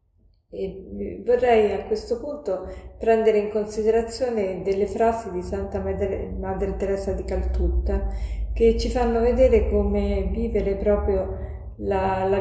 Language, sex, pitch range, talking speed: Italian, female, 180-225 Hz, 125 wpm